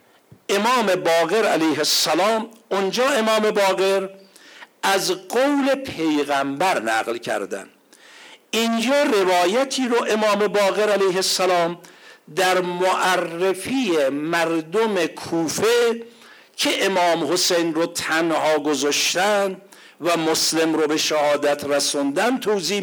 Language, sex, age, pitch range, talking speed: Persian, male, 60-79, 170-225 Hz, 95 wpm